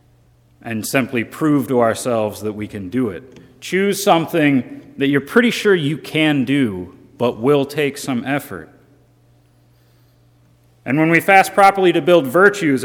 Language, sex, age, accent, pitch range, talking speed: English, male, 30-49, American, 110-145 Hz, 150 wpm